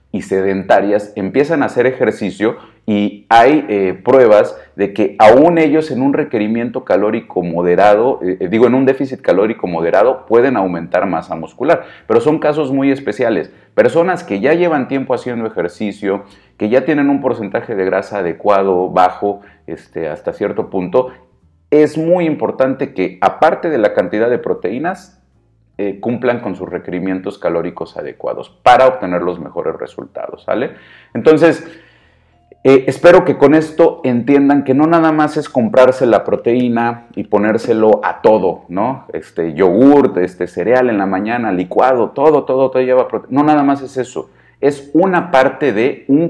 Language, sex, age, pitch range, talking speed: Spanish, male, 40-59, 100-145 Hz, 155 wpm